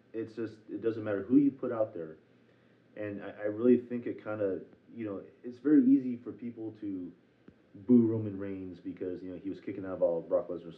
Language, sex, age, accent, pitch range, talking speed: English, male, 30-49, American, 95-125 Hz, 230 wpm